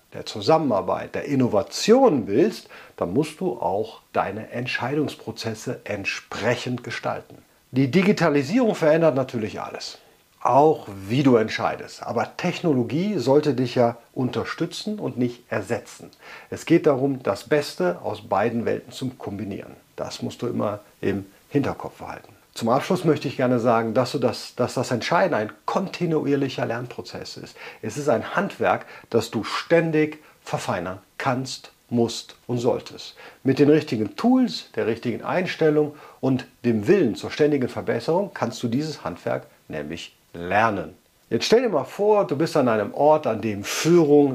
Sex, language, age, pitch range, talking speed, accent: male, German, 50-69, 120-155 Hz, 145 wpm, German